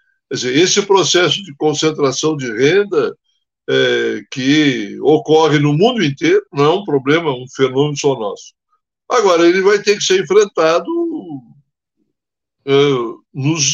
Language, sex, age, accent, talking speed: Portuguese, male, 60-79, Brazilian, 130 wpm